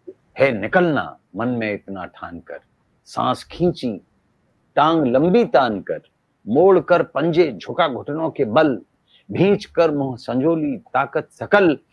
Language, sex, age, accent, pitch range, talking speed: Hindi, male, 50-69, native, 135-185 Hz, 130 wpm